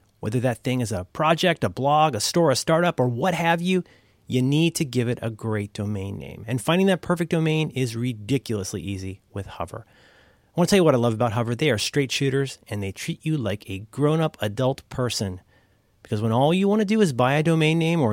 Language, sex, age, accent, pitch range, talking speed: English, male, 30-49, American, 110-155 Hz, 235 wpm